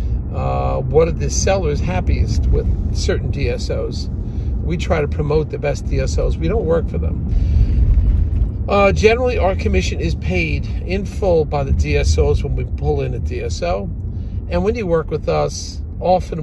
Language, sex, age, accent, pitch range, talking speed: English, male, 50-69, American, 70-100 Hz, 165 wpm